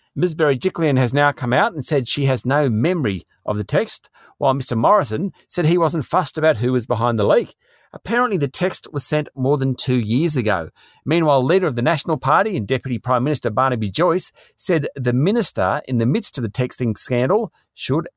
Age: 40-59